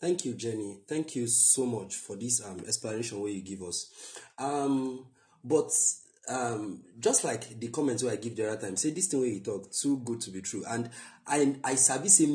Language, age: English, 30-49